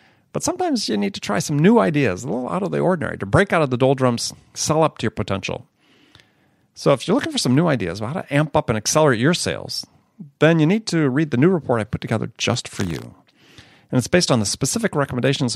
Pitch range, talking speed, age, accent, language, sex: 115-155 Hz, 245 wpm, 40-59, American, English, male